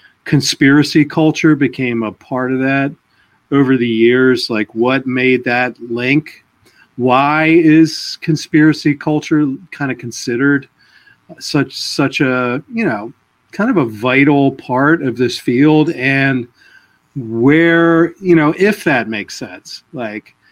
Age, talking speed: 40-59, 130 wpm